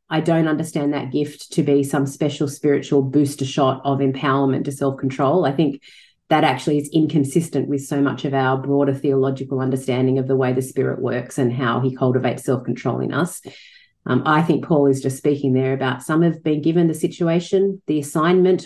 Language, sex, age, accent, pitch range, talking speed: English, female, 40-59, Australian, 140-175 Hz, 195 wpm